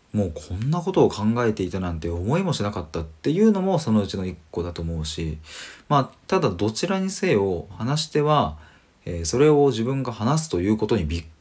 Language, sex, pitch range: Japanese, male, 80-130 Hz